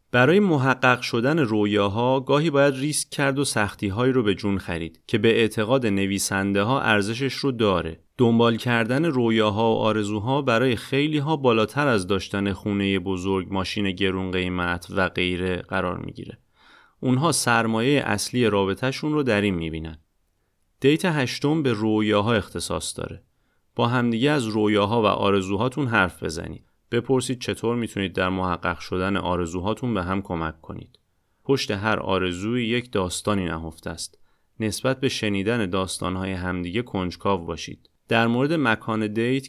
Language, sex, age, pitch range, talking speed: Persian, male, 30-49, 95-120 Hz, 145 wpm